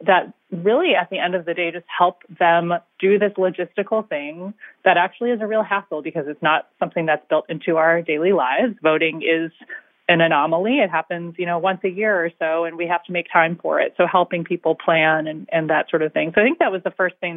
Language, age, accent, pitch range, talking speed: English, 30-49, American, 155-180 Hz, 240 wpm